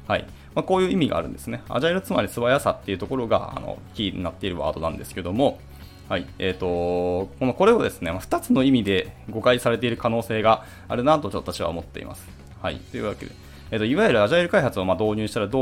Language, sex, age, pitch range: Japanese, male, 20-39, 95-145 Hz